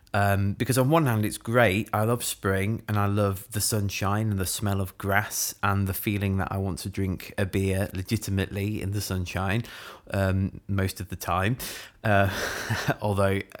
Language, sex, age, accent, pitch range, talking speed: English, male, 20-39, British, 100-125 Hz, 180 wpm